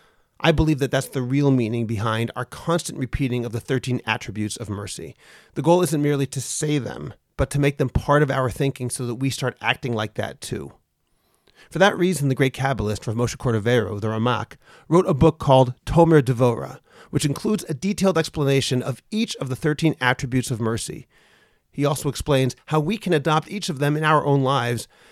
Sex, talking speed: male, 200 wpm